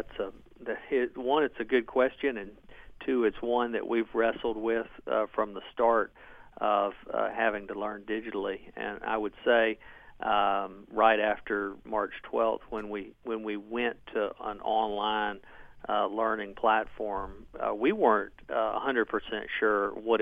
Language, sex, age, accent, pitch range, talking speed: English, male, 50-69, American, 105-115 Hz, 160 wpm